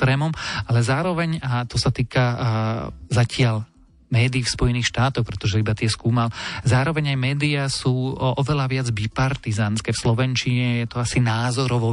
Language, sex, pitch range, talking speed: Slovak, male, 115-135 Hz, 145 wpm